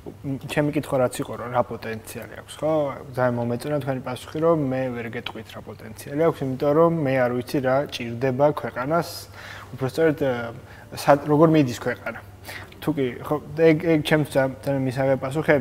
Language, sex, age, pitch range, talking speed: English, male, 20-39, 115-145 Hz, 115 wpm